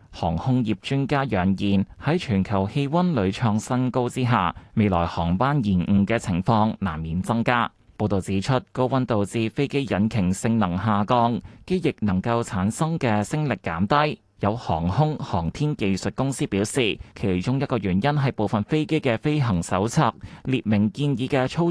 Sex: male